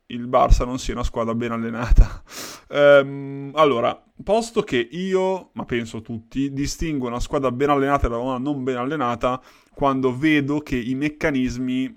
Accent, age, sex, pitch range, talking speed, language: native, 20-39, male, 115-140 Hz, 155 wpm, Italian